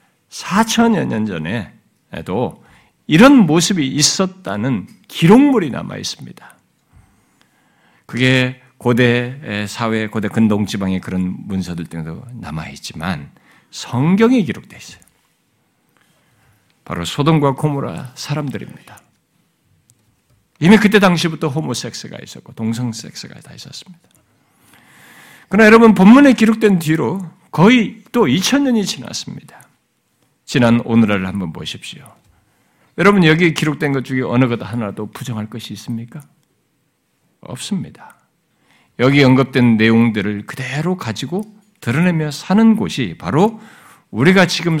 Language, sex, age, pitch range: Korean, male, 50-69, 120-185 Hz